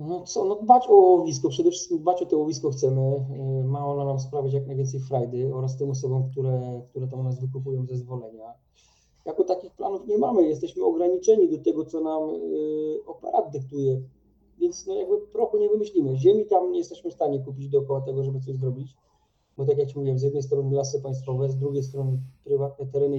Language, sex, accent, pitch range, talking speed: Polish, male, native, 135-175 Hz, 195 wpm